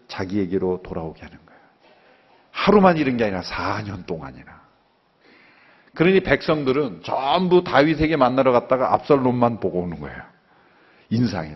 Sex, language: male, Korean